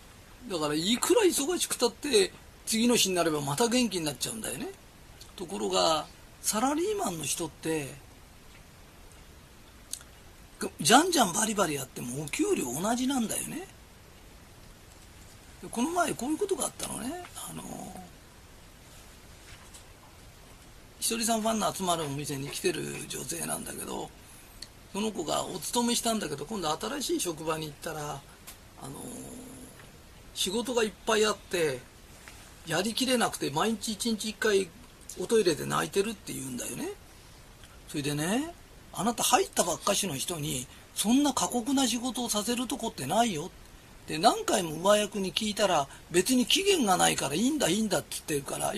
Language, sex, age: Japanese, male, 40-59